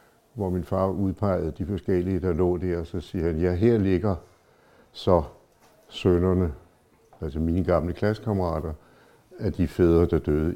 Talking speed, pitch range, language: 155 wpm, 80-100 Hz, Danish